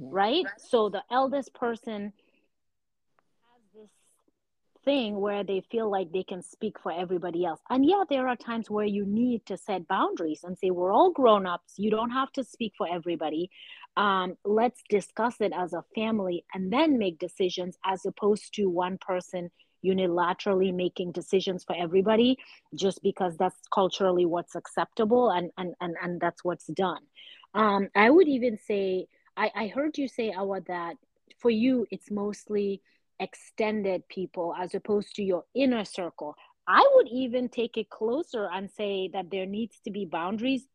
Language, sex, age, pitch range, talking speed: English, female, 30-49, 185-245 Hz, 170 wpm